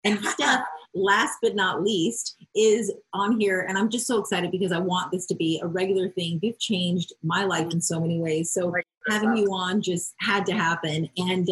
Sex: female